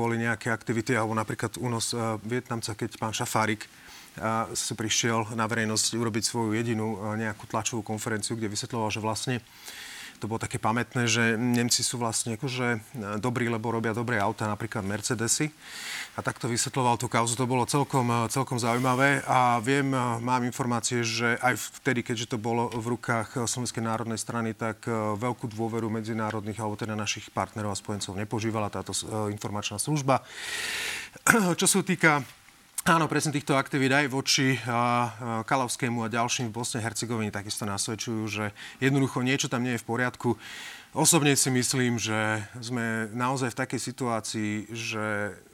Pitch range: 110-125 Hz